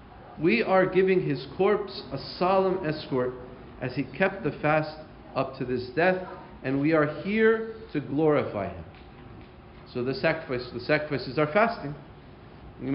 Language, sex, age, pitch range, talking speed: English, male, 40-59, 130-165 Hz, 150 wpm